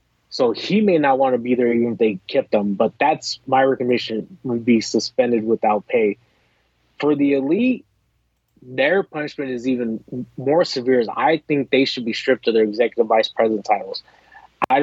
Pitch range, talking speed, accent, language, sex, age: 115-145 Hz, 180 wpm, American, English, male, 20-39